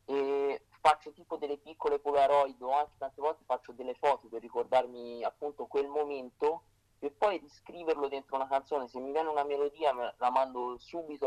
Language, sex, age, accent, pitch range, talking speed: Italian, male, 30-49, native, 120-145 Hz, 175 wpm